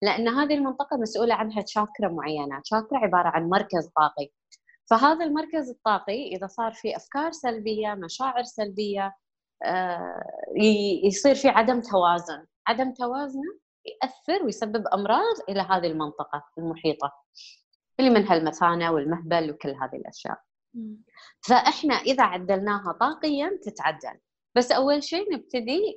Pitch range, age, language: 175-245 Hz, 20-39, English